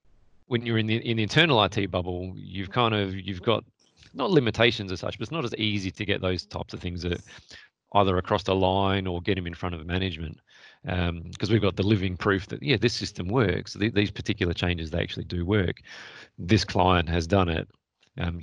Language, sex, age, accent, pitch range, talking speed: English, male, 30-49, Australian, 85-100 Hz, 220 wpm